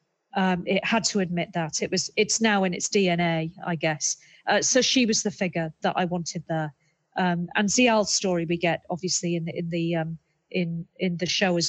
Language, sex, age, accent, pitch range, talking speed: English, female, 40-59, British, 175-215 Hz, 215 wpm